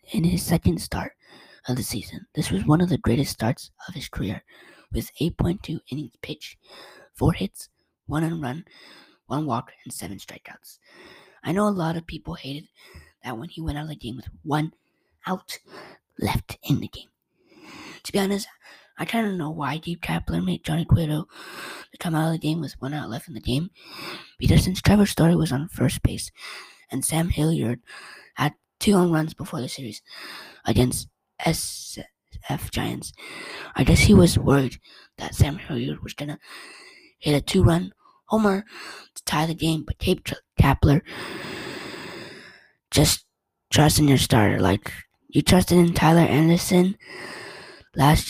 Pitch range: 130-175 Hz